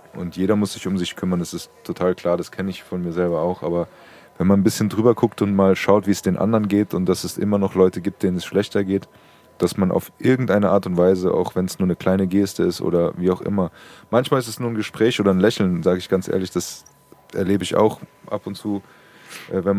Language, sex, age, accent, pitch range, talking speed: German, male, 20-39, German, 95-110 Hz, 255 wpm